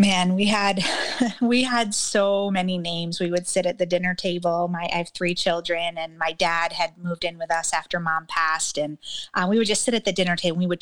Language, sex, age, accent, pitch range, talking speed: English, female, 30-49, American, 170-205 Hz, 245 wpm